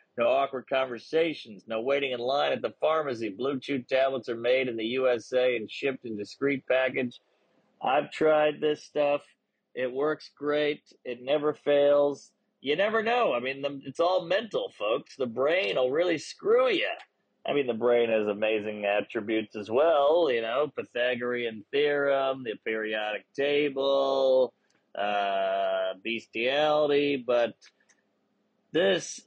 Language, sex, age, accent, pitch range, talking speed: English, male, 40-59, American, 120-150 Hz, 135 wpm